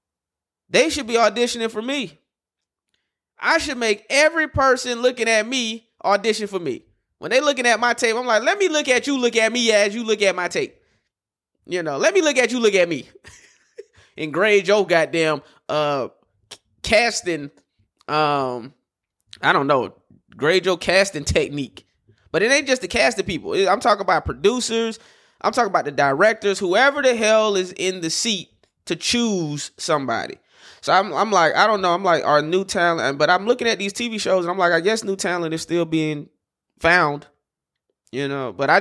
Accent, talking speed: American, 190 wpm